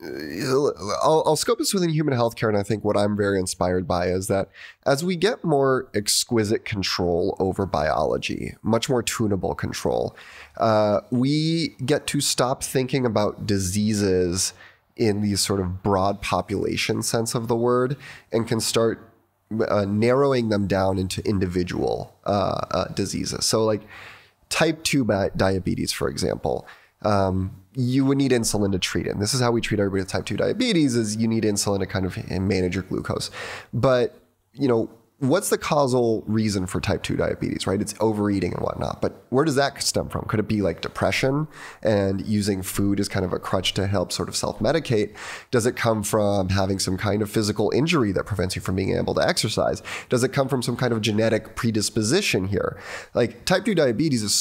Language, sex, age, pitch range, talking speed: English, male, 20-39, 95-120 Hz, 185 wpm